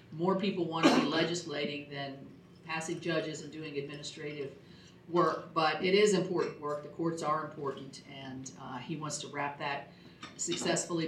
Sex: female